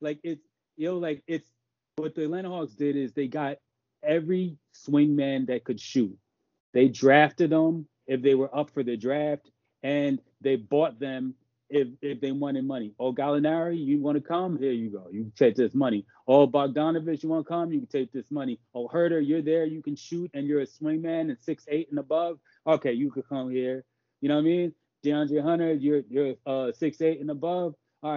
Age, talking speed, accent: 30-49, 205 wpm, American